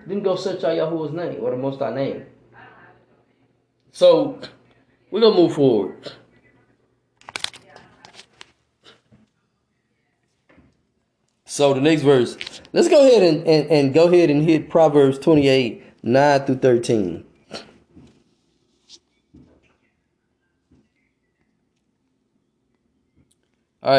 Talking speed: 90 wpm